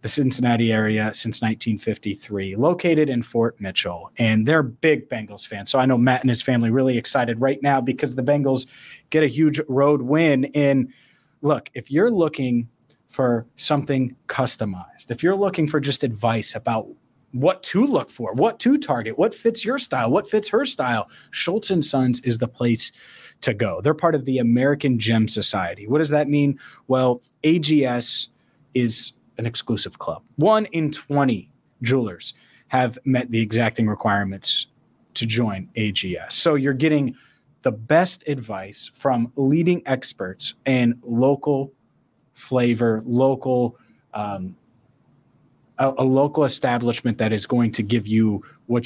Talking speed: 155 wpm